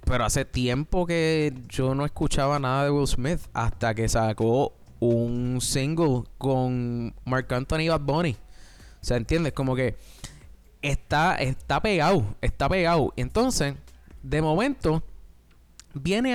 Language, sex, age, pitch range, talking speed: Spanish, male, 20-39, 125-185 Hz, 130 wpm